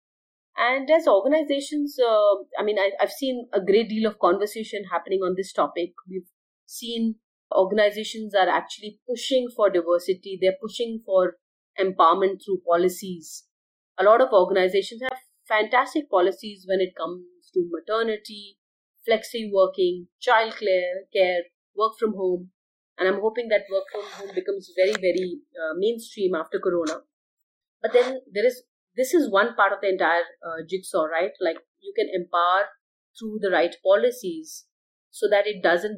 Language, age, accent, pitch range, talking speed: English, 30-49, Indian, 185-230 Hz, 155 wpm